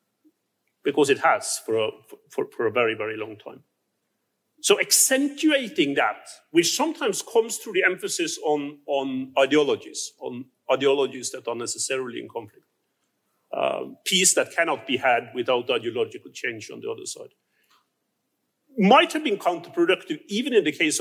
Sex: male